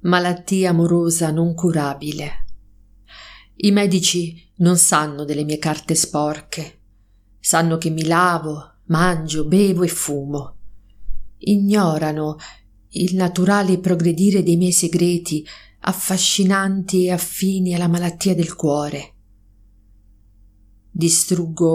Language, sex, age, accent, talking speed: Italian, female, 40-59, native, 95 wpm